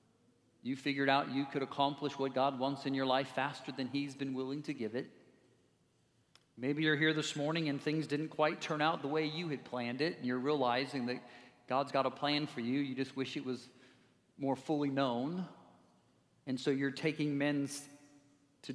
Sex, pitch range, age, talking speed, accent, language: male, 135-180 Hz, 40-59, 195 wpm, American, English